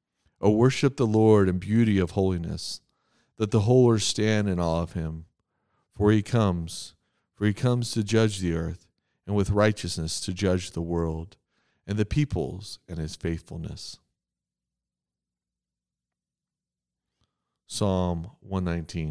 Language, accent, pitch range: English, American, 85-110 Hz